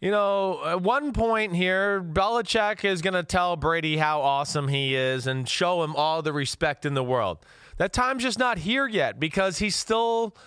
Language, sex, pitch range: English, male, 145-195 Hz